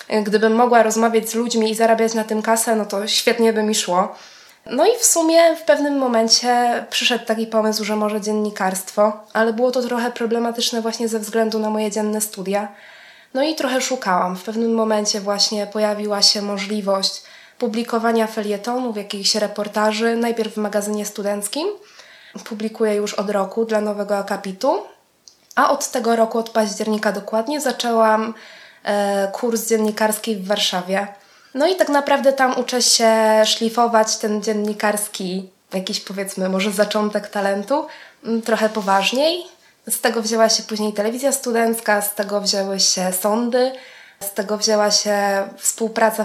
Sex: female